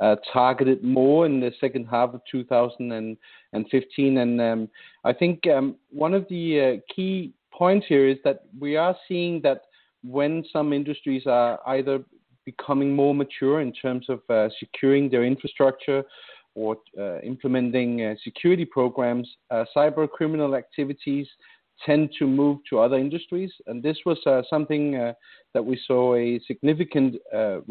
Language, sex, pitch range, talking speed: English, male, 125-150 Hz, 150 wpm